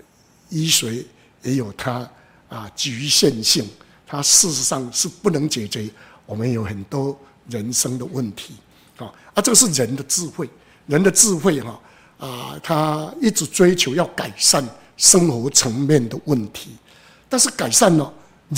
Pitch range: 125-190 Hz